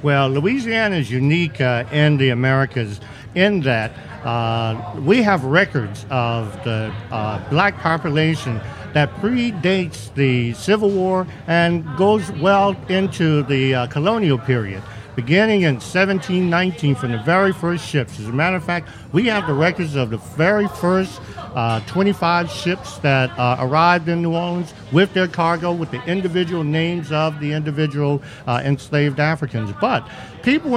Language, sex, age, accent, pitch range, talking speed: English, male, 50-69, American, 135-185 Hz, 150 wpm